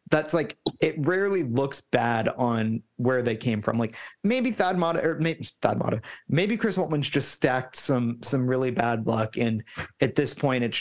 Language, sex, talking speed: English, male, 190 wpm